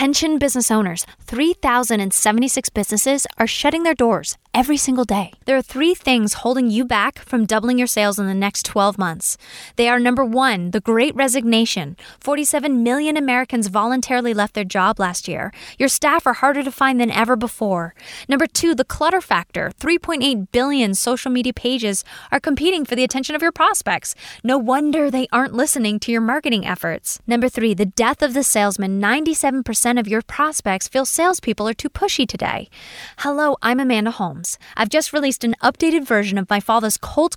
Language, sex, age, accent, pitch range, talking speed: English, female, 10-29, American, 210-270 Hz, 180 wpm